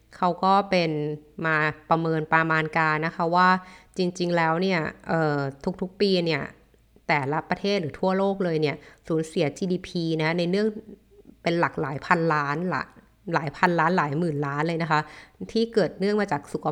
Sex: female